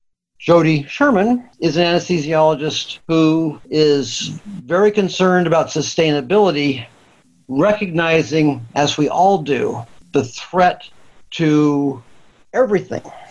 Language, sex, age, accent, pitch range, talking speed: English, male, 50-69, American, 140-180 Hz, 90 wpm